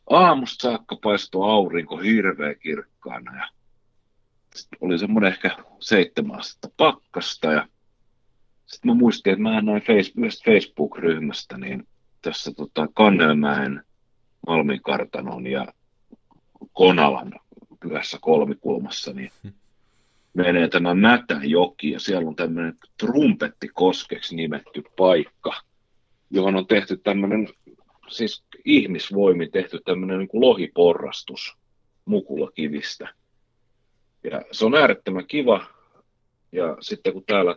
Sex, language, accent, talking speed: male, Finnish, native, 95 wpm